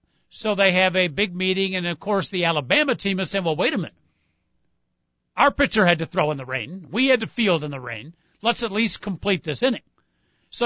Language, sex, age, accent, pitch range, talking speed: English, male, 50-69, American, 155-235 Hz, 225 wpm